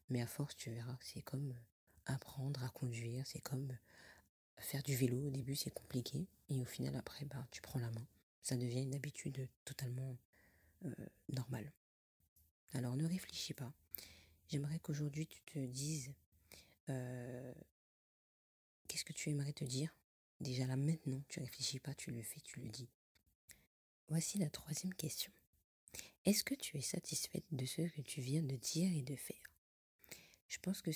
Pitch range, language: 125-155 Hz, French